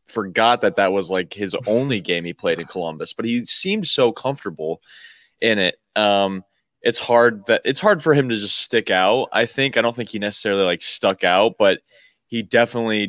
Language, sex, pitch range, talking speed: English, male, 95-115 Hz, 200 wpm